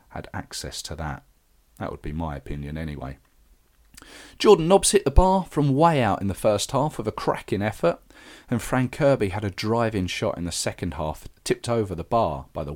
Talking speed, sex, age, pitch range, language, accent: 200 wpm, male, 40-59, 85-135 Hz, English, British